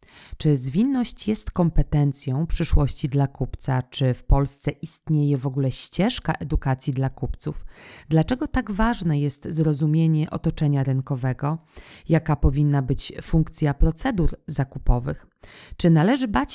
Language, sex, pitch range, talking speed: Polish, female, 140-165 Hz, 120 wpm